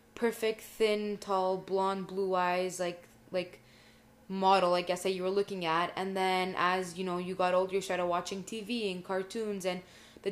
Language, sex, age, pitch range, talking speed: English, female, 20-39, 185-200 Hz, 185 wpm